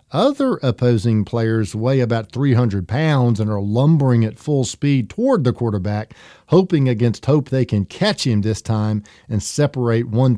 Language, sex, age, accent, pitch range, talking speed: English, male, 50-69, American, 110-135 Hz, 160 wpm